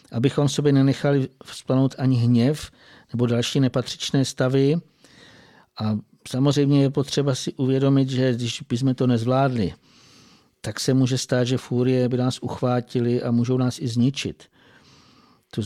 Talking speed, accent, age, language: 140 wpm, native, 50-69, Czech